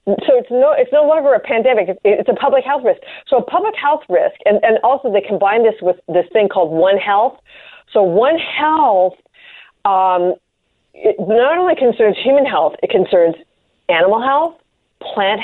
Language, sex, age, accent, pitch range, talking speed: English, female, 40-59, American, 205-290 Hz, 175 wpm